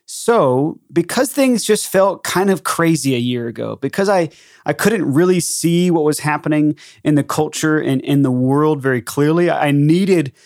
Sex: male